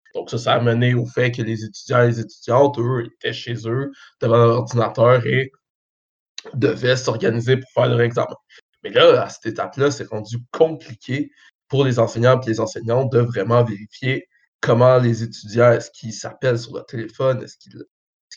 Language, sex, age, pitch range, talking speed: French, male, 20-39, 120-130 Hz, 185 wpm